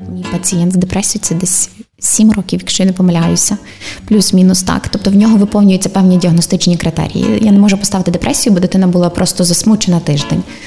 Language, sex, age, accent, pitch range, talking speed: Ukrainian, female, 20-39, native, 175-205 Hz, 175 wpm